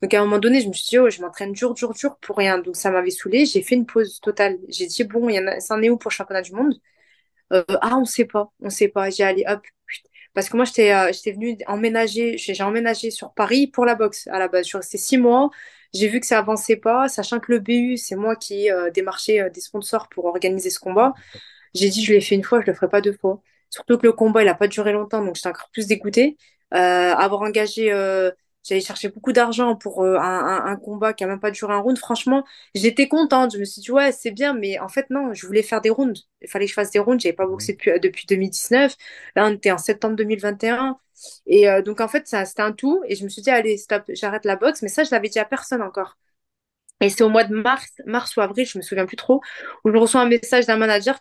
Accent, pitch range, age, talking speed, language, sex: French, 200-245 Hz, 20-39, 275 wpm, French, female